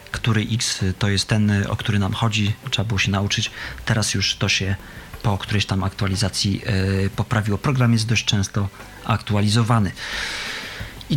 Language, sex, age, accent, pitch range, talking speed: Polish, male, 40-59, native, 100-120 Hz, 150 wpm